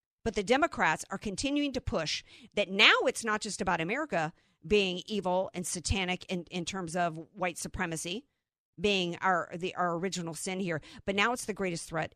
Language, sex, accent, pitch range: English, female, American, 170-210 Hz